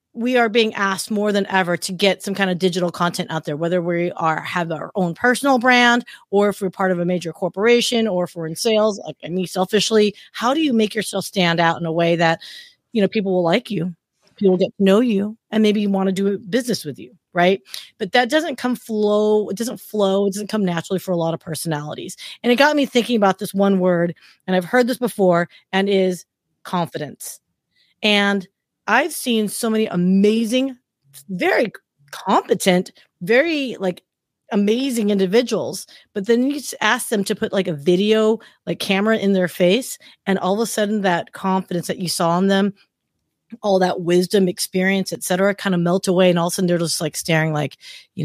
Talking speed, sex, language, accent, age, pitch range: 205 wpm, female, English, American, 30-49, 170-215 Hz